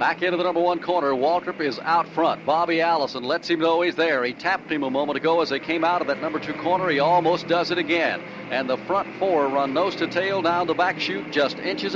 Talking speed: 255 wpm